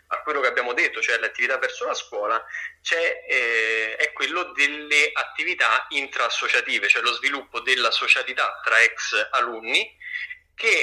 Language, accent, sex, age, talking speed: Italian, native, male, 30-49, 145 wpm